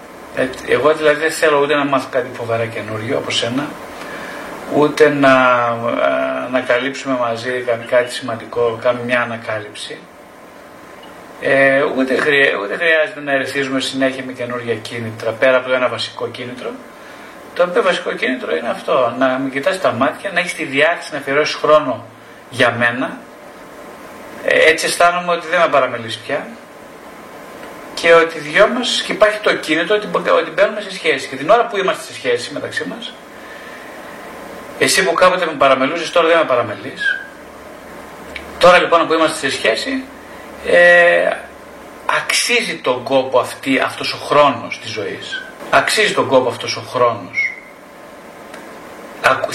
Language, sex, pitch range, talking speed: Greek, male, 125-165 Hz, 145 wpm